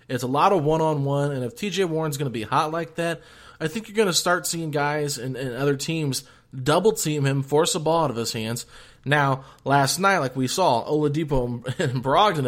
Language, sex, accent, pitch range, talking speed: English, male, American, 125-150 Hz, 215 wpm